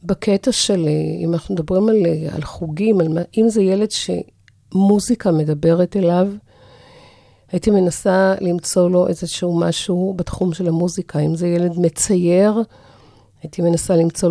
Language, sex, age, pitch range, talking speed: Hebrew, female, 50-69, 165-215 Hz, 135 wpm